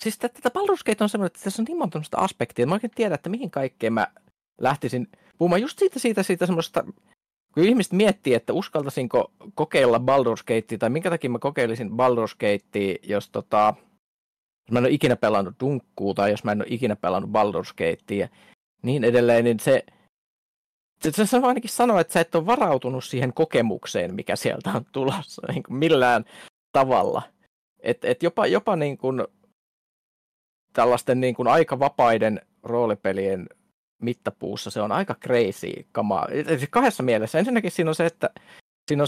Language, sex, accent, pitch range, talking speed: Finnish, male, native, 115-170 Hz, 160 wpm